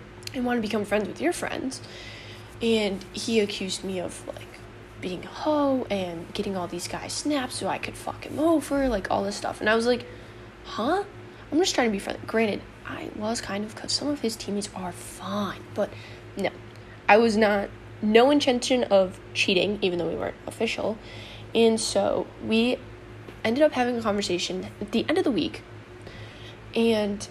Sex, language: female, English